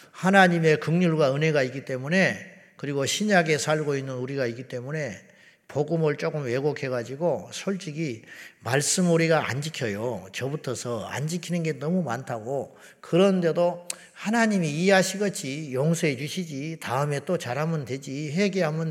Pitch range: 145-195 Hz